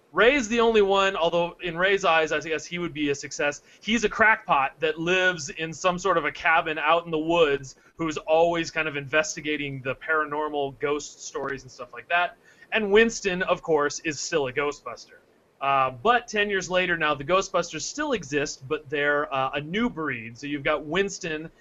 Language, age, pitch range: English, 30-49, 140-180 Hz